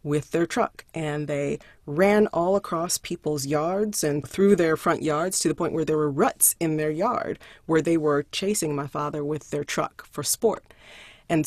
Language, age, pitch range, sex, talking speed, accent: English, 40-59, 150-195 Hz, female, 195 wpm, American